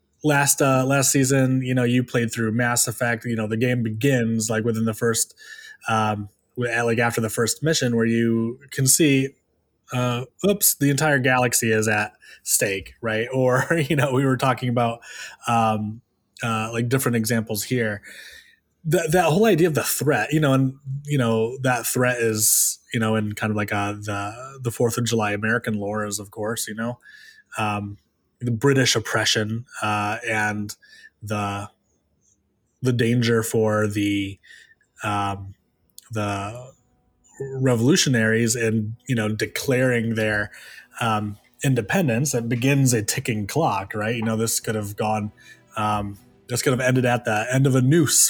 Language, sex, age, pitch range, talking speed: English, male, 20-39, 110-130 Hz, 160 wpm